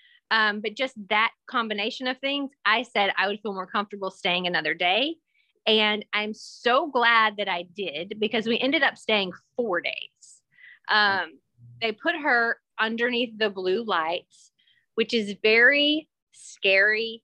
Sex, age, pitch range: female, 30-49, 190-240 Hz